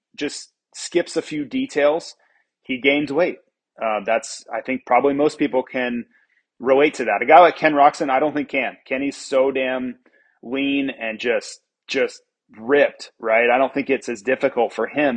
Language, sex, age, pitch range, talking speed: English, male, 30-49, 125-155 Hz, 180 wpm